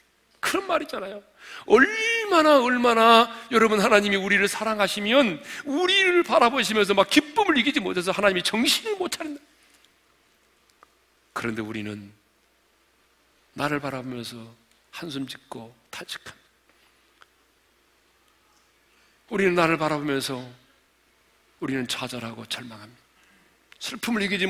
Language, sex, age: Korean, male, 40-59